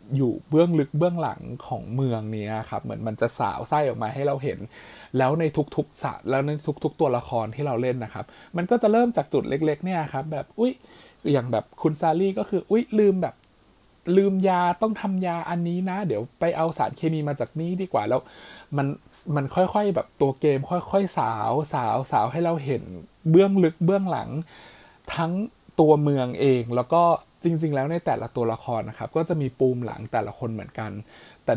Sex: male